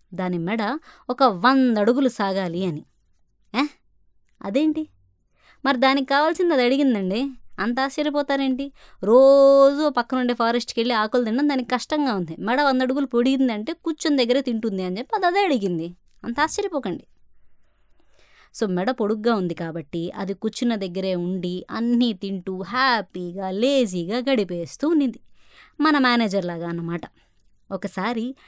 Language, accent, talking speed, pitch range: Telugu, native, 120 wpm, 190-270 Hz